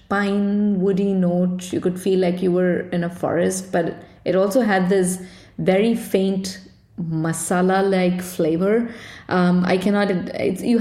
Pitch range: 180-210 Hz